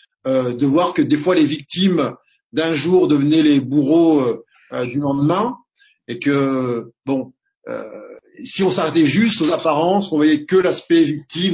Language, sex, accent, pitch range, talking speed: French, male, French, 130-165 Hz, 165 wpm